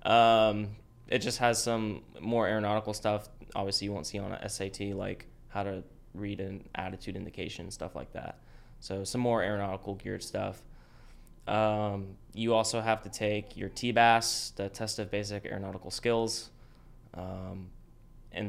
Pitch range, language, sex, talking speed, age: 95-115 Hz, English, male, 155 wpm, 10-29